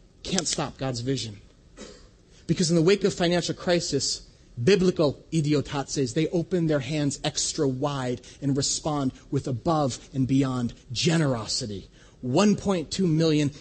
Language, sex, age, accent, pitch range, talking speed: English, male, 30-49, American, 150-215 Hz, 125 wpm